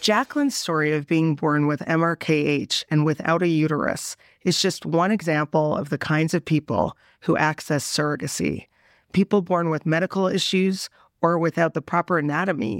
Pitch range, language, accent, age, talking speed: 150-175 Hz, English, American, 40-59, 155 wpm